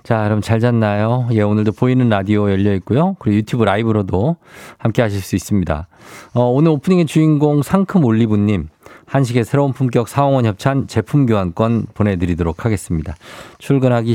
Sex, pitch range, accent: male, 100-140 Hz, native